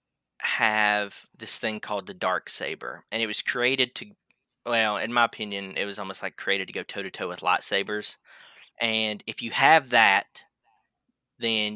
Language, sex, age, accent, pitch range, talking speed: English, male, 20-39, American, 95-115 Hz, 175 wpm